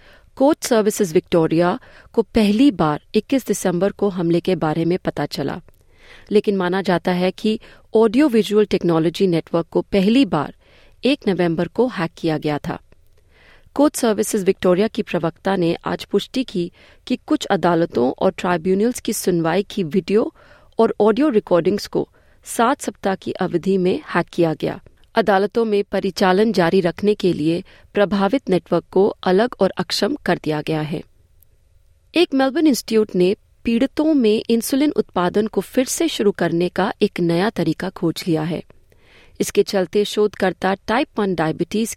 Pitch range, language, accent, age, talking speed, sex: 175-220 Hz, Hindi, native, 30-49, 155 wpm, female